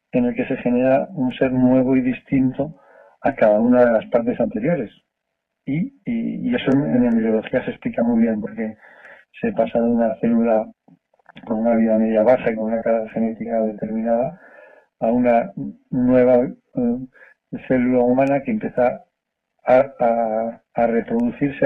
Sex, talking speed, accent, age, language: male, 155 wpm, Spanish, 40-59, Spanish